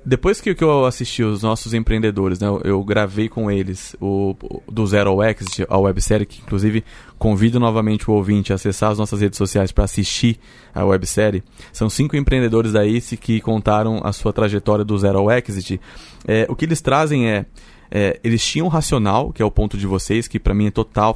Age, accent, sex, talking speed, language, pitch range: 20-39, Brazilian, male, 200 wpm, Portuguese, 105-130 Hz